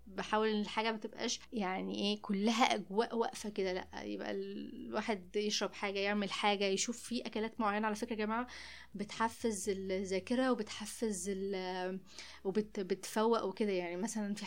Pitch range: 200-240 Hz